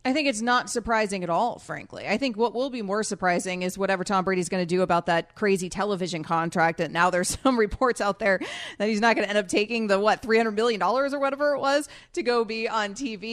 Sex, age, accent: female, 30-49, American